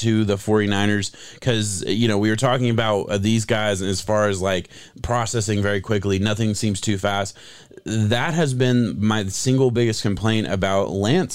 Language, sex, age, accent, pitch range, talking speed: English, male, 30-49, American, 105-125 Hz, 175 wpm